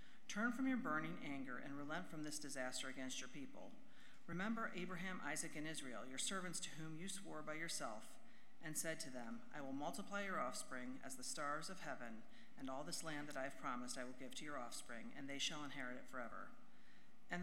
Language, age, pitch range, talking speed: English, 50-69, 150-235 Hz, 210 wpm